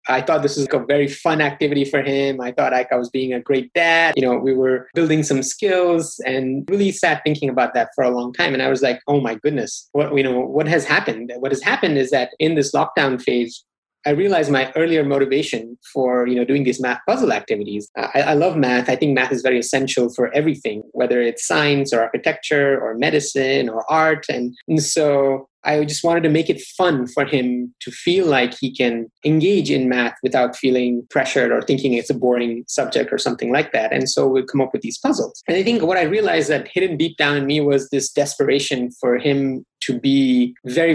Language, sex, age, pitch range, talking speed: English, male, 20-39, 125-150 Hz, 225 wpm